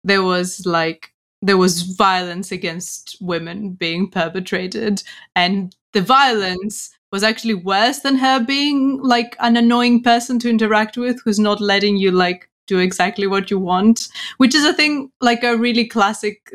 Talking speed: 160 wpm